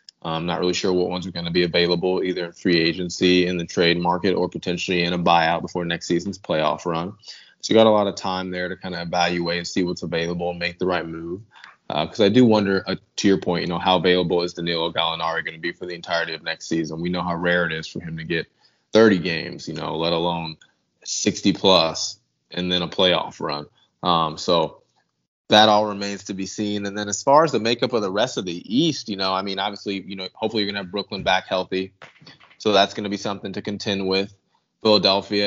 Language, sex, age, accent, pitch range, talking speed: English, male, 20-39, American, 90-100 Hz, 245 wpm